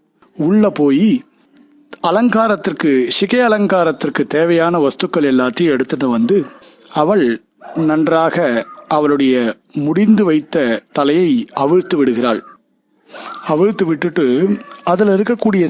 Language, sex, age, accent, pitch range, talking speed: Tamil, male, 50-69, native, 165-230 Hz, 85 wpm